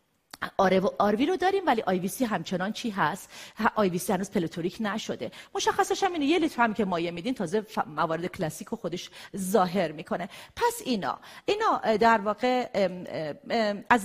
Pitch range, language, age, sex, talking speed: 200-255 Hz, Persian, 40-59, female, 165 wpm